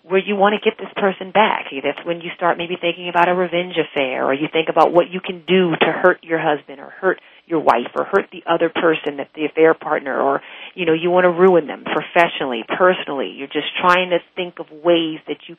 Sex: female